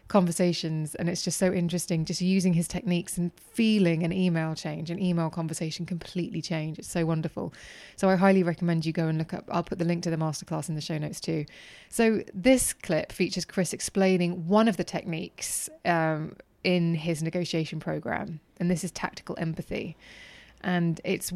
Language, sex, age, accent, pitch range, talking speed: English, female, 20-39, British, 160-185 Hz, 185 wpm